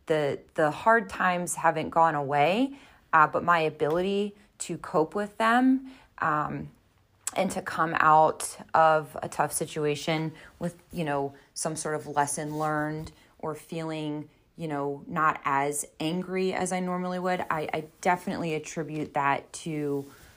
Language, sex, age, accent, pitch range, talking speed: English, female, 30-49, American, 150-170 Hz, 145 wpm